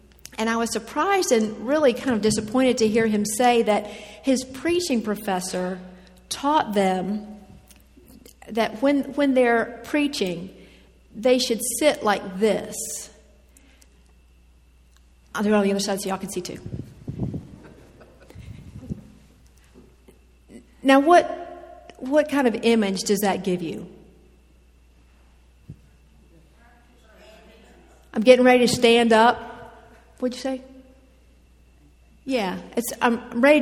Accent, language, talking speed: American, English, 115 wpm